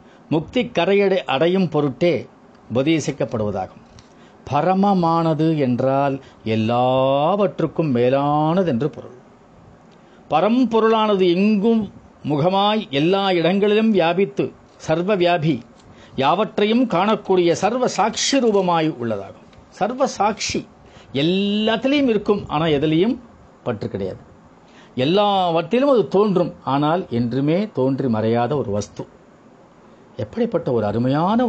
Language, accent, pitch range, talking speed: Tamil, native, 130-180 Hz, 90 wpm